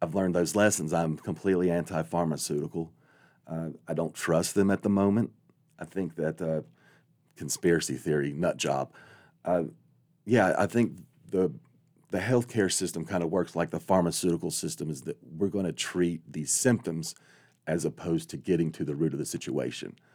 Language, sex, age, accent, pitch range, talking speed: English, male, 40-59, American, 80-90 Hz, 165 wpm